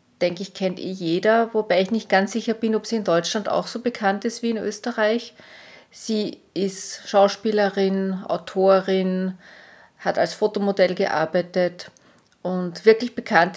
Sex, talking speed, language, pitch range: female, 145 wpm, German, 190-230 Hz